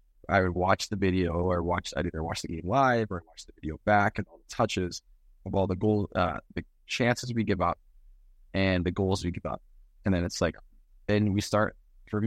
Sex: male